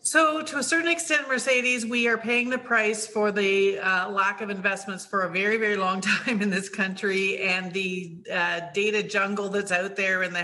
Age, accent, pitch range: 50-69, American, 180-210 Hz